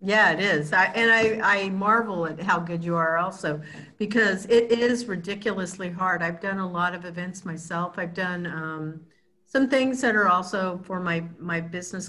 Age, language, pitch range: 50-69, English, 165-190 Hz